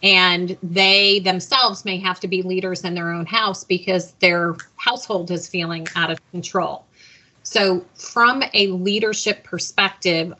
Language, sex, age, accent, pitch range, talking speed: English, female, 30-49, American, 180-195 Hz, 145 wpm